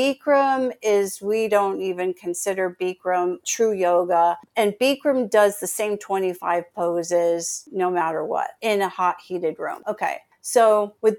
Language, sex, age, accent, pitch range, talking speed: English, female, 50-69, American, 180-210 Hz, 145 wpm